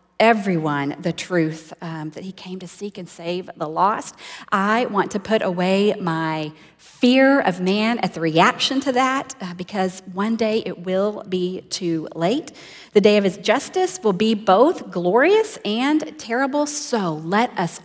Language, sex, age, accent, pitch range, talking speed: English, female, 40-59, American, 165-210 Hz, 170 wpm